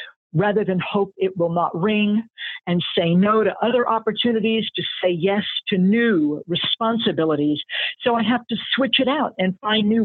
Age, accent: 50-69, American